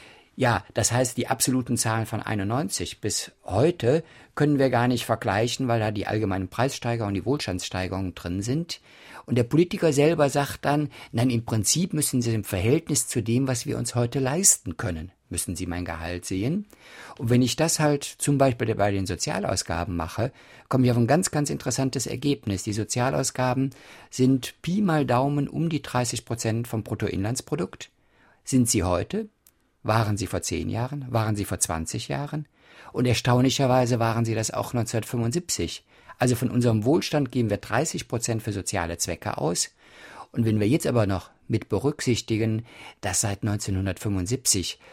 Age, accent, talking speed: 50-69, German, 165 wpm